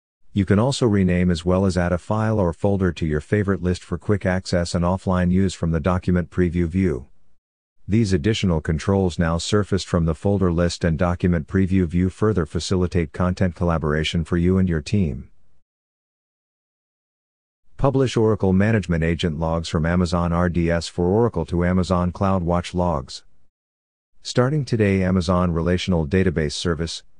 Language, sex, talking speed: English, male, 150 wpm